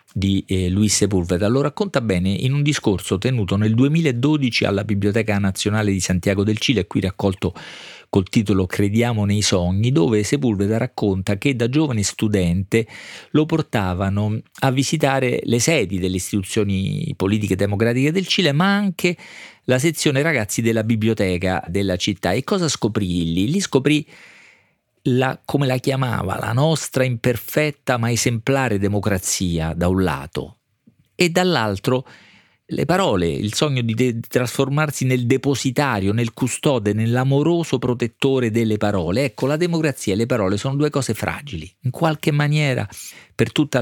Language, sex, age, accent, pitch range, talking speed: Italian, male, 40-59, native, 100-135 Hz, 145 wpm